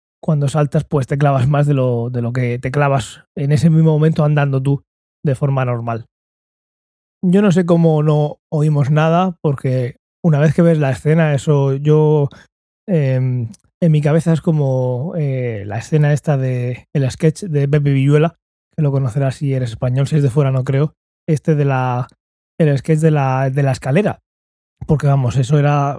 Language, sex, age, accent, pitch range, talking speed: Spanish, male, 20-39, Spanish, 135-165 Hz, 185 wpm